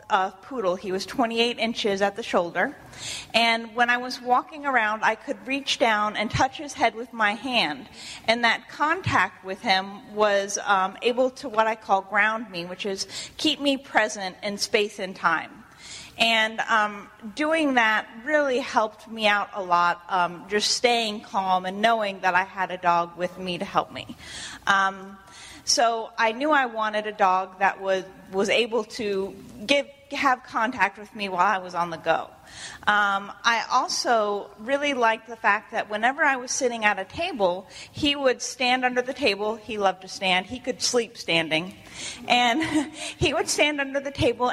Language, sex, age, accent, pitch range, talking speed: English, female, 30-49, American, 195-250 Hz, 180 wpm